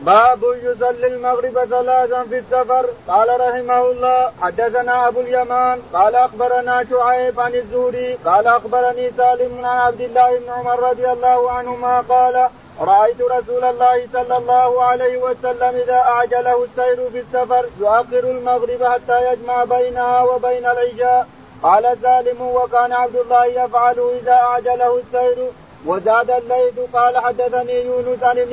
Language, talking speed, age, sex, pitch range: Arabic, 135 wpm, 40-59, male, 245-250 Hz